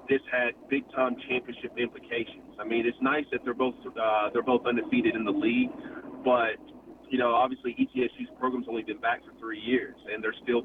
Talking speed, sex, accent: 190 wpm, male, American